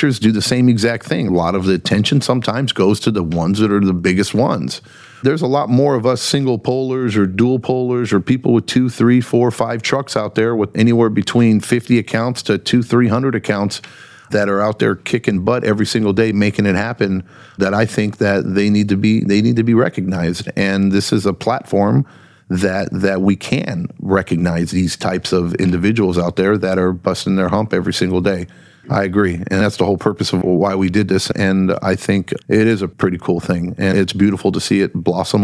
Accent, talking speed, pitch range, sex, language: American, 215 wpm, 95-110 Hz, male, English